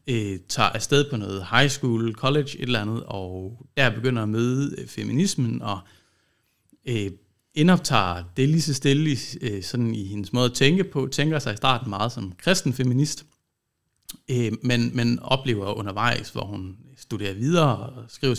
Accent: native